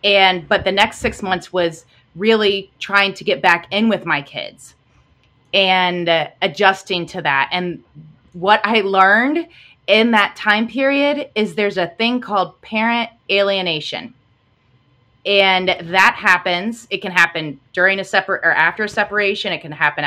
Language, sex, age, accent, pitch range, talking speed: English, female, 30-49, American, 165-210 Hz, 155 wpm